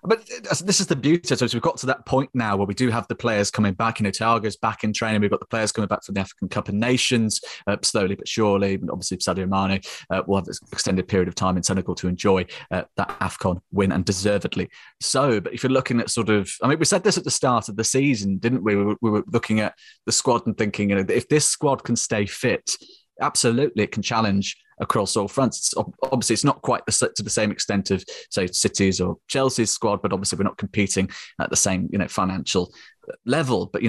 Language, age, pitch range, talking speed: English, 20-39, 100-125 Hz, 240 wpm